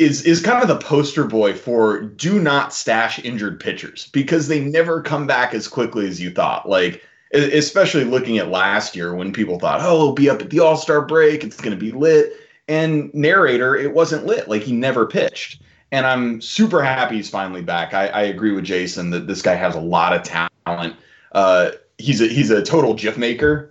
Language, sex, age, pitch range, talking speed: English, male, 30-49, 95-145 Hz, 210 wpm